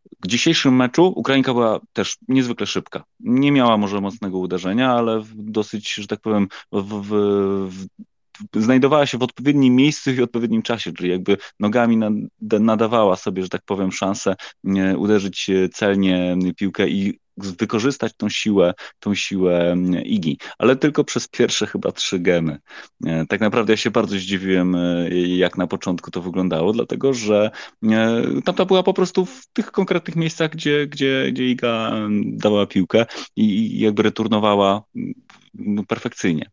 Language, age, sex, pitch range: Polish, 30-49, male, 95-125 Hz